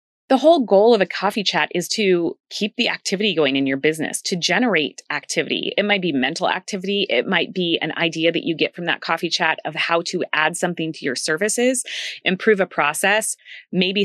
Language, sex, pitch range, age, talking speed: English, female, 165-210 Hz, 30-49, 205 wpm